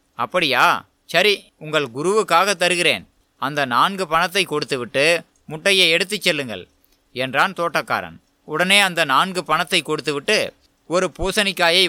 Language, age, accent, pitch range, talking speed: Tamil, 20-39, native, 155-195 Hz, 105 wpm